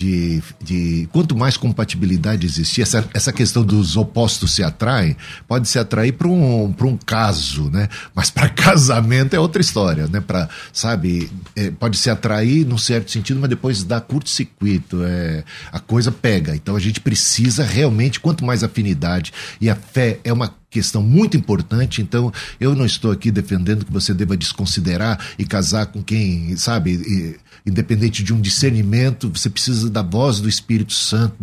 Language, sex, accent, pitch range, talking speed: Portuguese, male, Brazilian, 105-130 Hz, 170 wpm